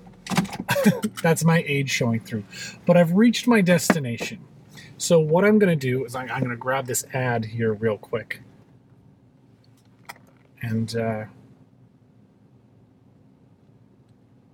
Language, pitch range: English, 120-175 Hz